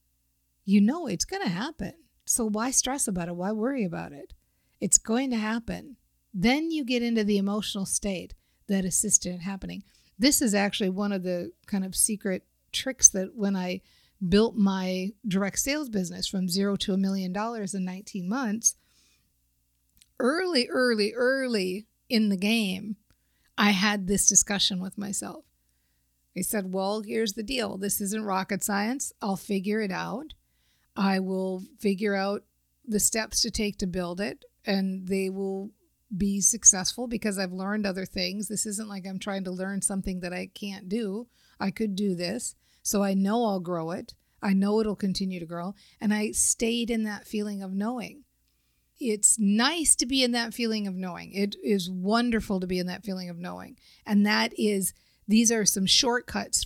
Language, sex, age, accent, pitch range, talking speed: English, female, 50-69, American, 190-220 Hz, 175 wpm